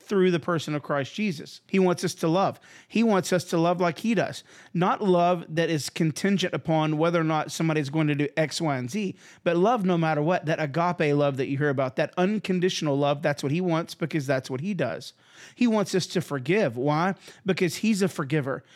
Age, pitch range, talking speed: 30-49, 155-190 Hz, 225 wpm